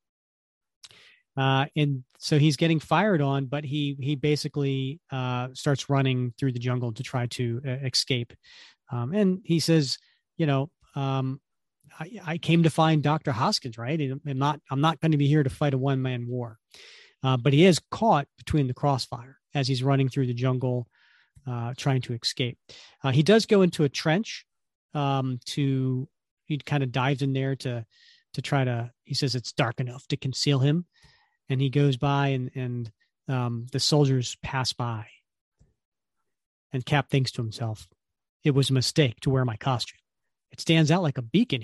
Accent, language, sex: American, English, male